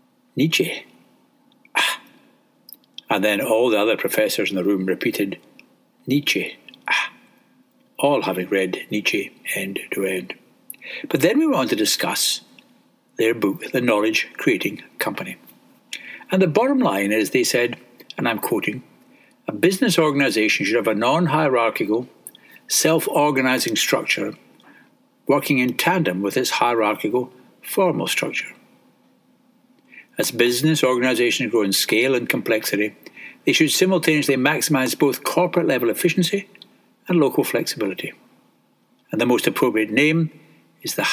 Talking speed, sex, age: 125 wpm, male, 60-79